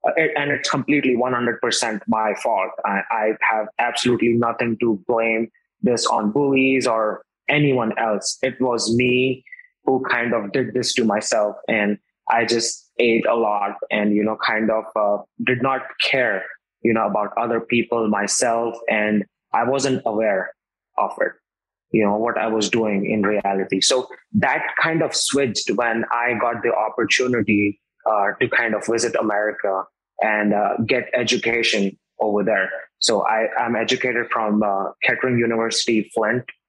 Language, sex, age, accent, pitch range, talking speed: English, male, 20-39, Indian, 105-125 Hz, 155 wpm